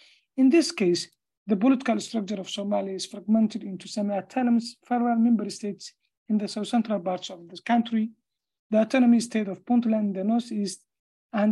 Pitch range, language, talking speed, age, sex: 200-230 Hz, English, 160 wpm, 50-69, male